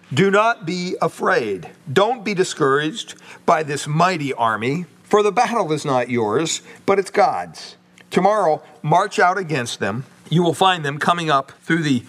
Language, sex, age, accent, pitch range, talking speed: English, male, 50-69, American, 135-195 Hz, 165 wpm